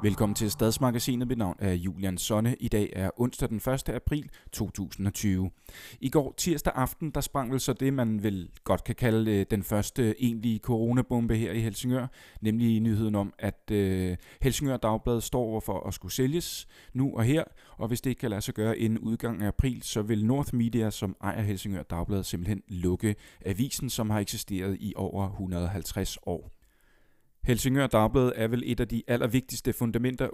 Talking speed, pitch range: 180 wpm, 100-125 Hz